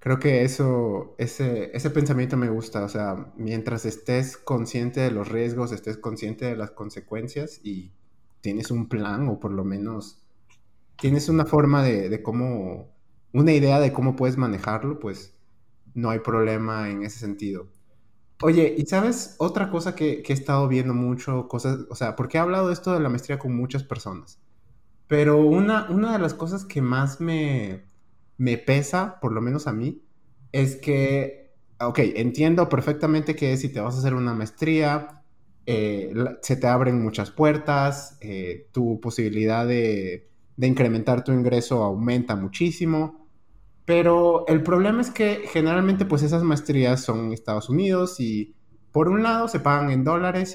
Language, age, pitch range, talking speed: Spanish, 30-49, 110-150 Hz, 165 wpm